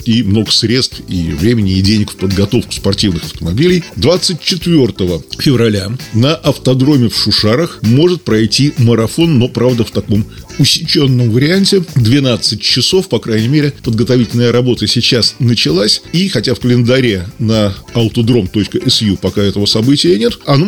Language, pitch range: Russian, 105-150 Hz